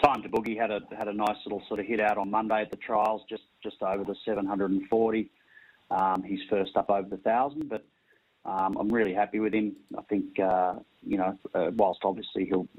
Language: English